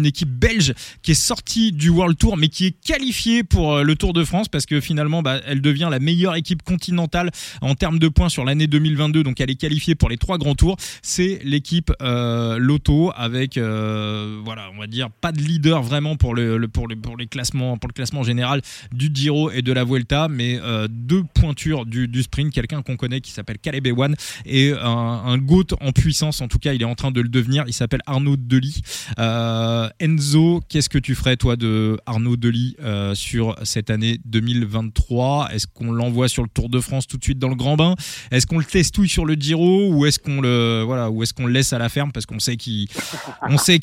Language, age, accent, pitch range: French, 20-39, French, 115-150 Hz